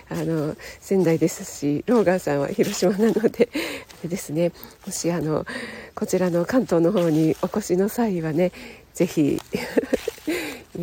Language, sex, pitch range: Japanese, female, 165-220 Hz